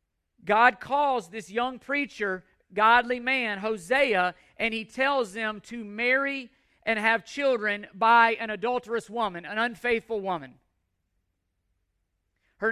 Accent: American